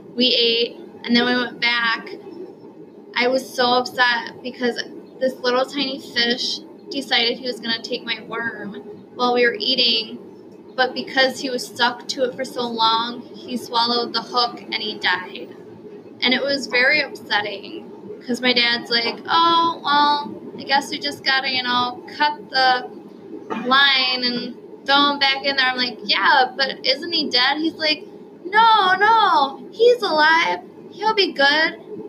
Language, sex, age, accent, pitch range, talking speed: English, female, 20-39, American, 225-285 Hz, 165 wpm